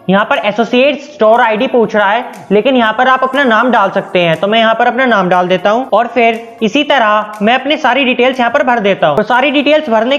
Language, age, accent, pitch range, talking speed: Hindi, 20-39, native, 210-265 Hz, 255 wpm